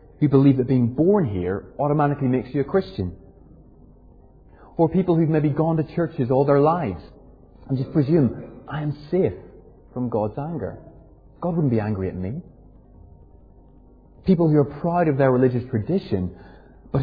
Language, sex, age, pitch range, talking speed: English, male, 30-49, 105-150 Hz, 160 wpm